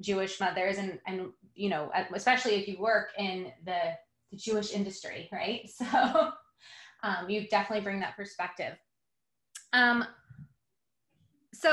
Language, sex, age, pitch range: English, female, 20-39, 195-245 Hz